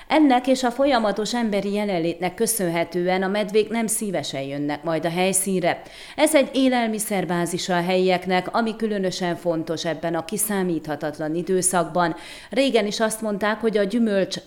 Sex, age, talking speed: female, 30-49, 140 wpm